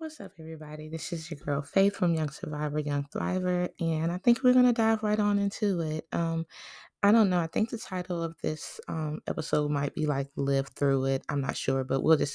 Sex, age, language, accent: female, 20-39, English, American